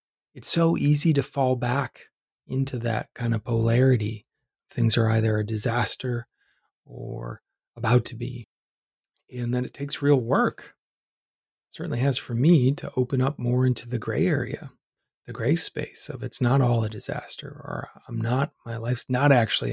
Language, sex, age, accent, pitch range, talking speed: English, male, 30-49, American, 115-135 Hz, 165 wpm